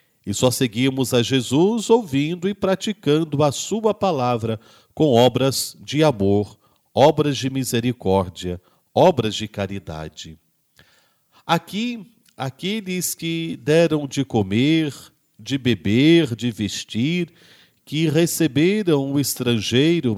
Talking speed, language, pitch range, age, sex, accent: 105 wpm, Portuguese, 115-165 Hz, 50-69, male, Brazilian